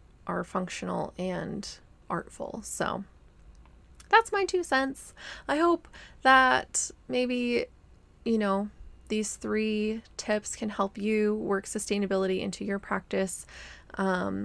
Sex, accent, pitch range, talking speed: female, American, 195-230 Hz, 110 wpm